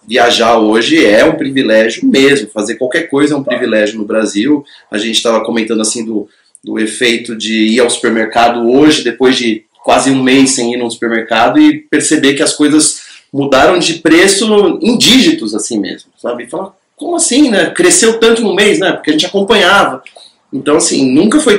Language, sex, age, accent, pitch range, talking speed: Portuguese, male, 30-49, Brazilian, 120-155 Hz, 185 wpm